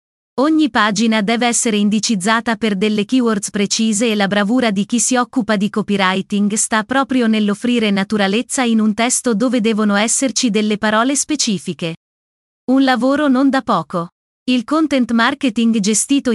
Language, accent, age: Italian, native, 30-49